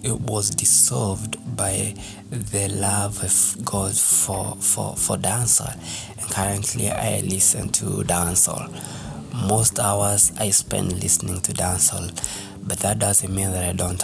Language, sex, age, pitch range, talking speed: English, male, 20-39, 95-115 Hz, 135 wpm